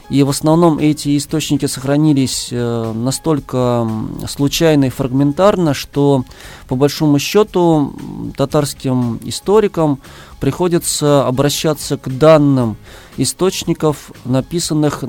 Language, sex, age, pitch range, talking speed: Russian, male, 20-39, 130-155 Hz, 90 wpm